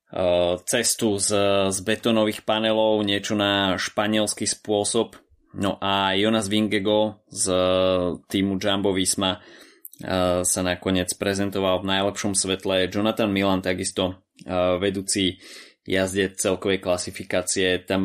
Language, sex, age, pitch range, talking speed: Slovak, male, 20-39, 90-100 Hz, 105 wpm